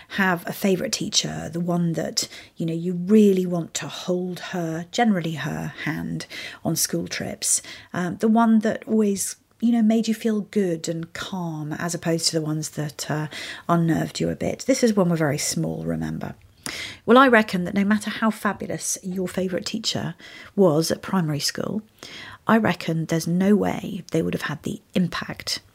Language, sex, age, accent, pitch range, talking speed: English, female, 40-59, British, 160-210 Hz, 180 wpm